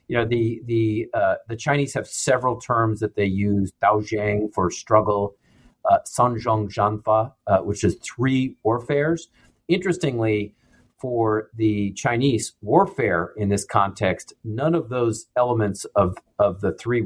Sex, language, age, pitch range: male, English, 40-59, 105-135 Hz